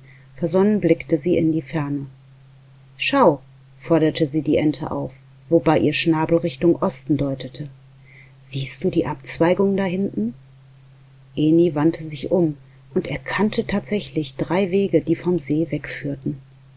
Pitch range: 135-175 Hz